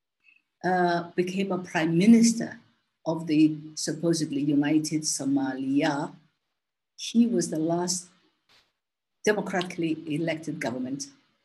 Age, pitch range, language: 50-69, 155-195 Hz, English